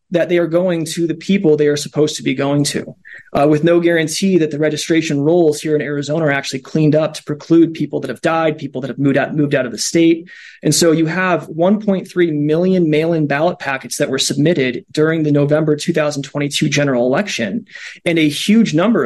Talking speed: 210 wpm